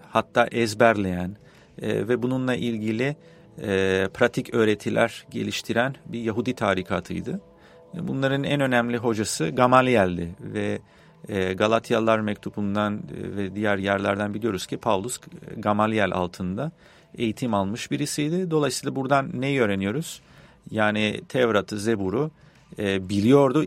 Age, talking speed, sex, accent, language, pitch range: 40-59, 95 wpm, male, Turkish, English, 100-125 Hz